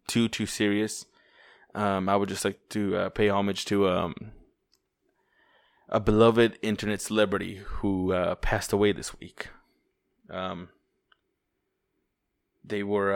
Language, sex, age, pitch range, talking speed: English, male, 20-39, 100-110 Hz, 125 wpm